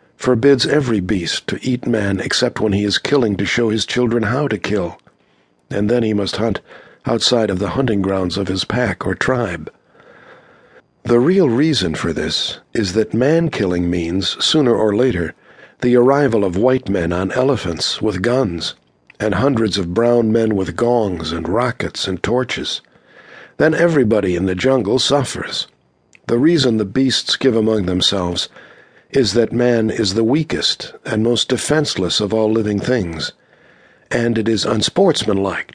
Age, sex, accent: 60-79, male, American